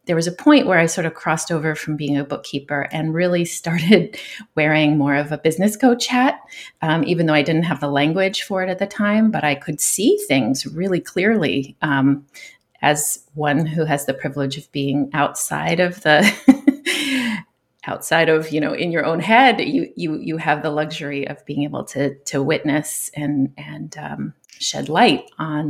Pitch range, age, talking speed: 145-180 Hz, 30-49, 190 wpm